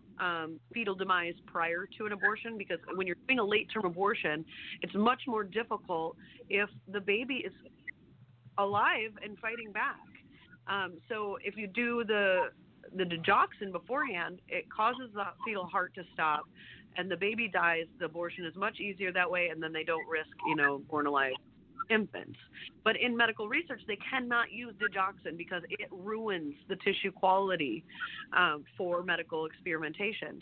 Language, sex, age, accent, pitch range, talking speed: English, female, 30-49, American, 175-225 Hz, 160 wpm